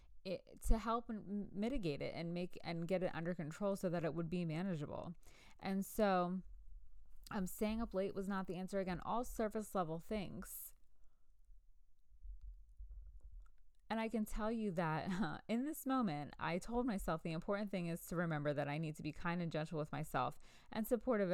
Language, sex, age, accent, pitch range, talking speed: English, female, 20-39, American, 150-200 Hz, 185 wpm